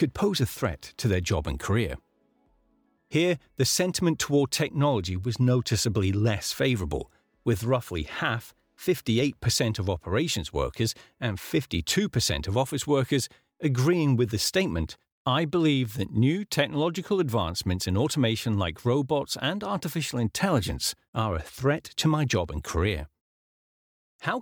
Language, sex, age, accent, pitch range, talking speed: English, male, 40-59, British, 100-150 Hz, 140 wpm